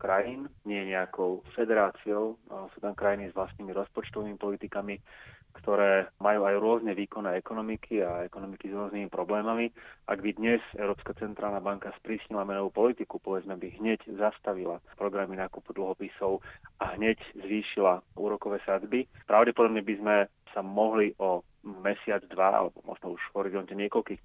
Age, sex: 30-49, male